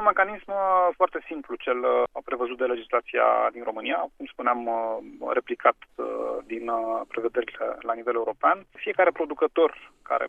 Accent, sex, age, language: native, male, 30-49, Romanian